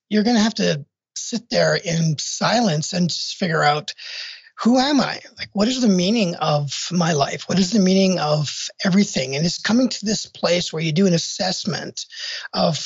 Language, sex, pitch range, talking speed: English, male, 165-205 Hz, 195 wpm